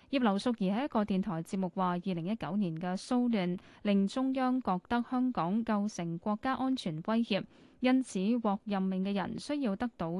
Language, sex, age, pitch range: Chinese, female, 10-29, 185-240 Hz